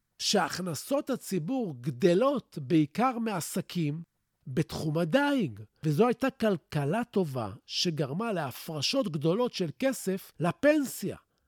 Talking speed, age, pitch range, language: 90 wpm, 50-69, 155-245 Hz, Hebrew